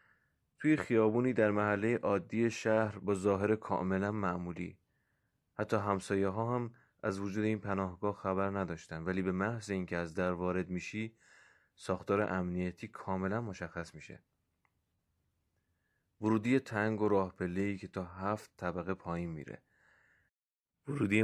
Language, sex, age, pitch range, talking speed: Persian, male, 30-49, 90-110 Hz, 125 wpm